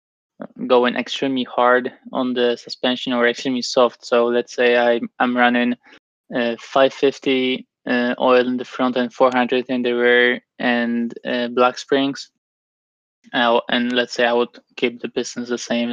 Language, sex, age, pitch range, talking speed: English, male, 20-39, 120-130 Hz, 160 wpm